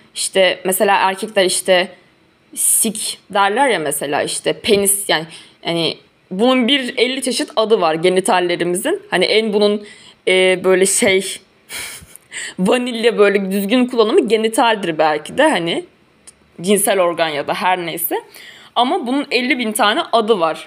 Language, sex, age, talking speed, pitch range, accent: Turkish, female, 20-39, 135 wpm, 180-240 Hz, native